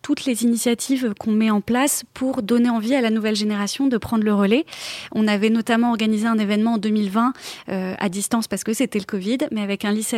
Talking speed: 225 wpm